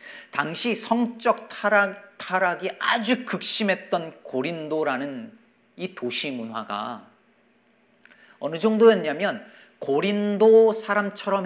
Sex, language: male, Korean